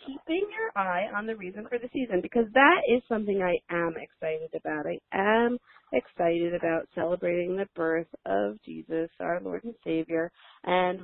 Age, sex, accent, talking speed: 40-59, female, American, 170 wpm